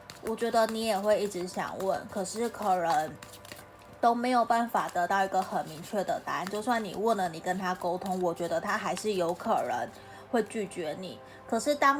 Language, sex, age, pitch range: Chinese, female, 20-39, 180-225 Hz